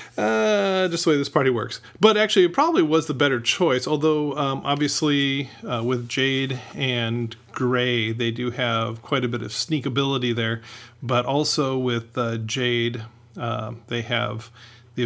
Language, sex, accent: English, male, American